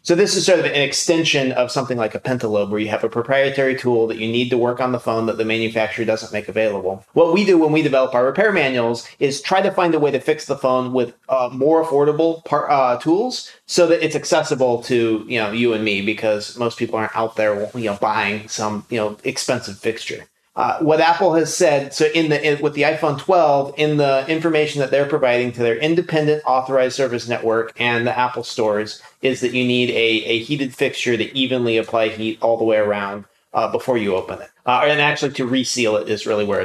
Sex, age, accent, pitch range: male, 30-49, American, 115-150 Hz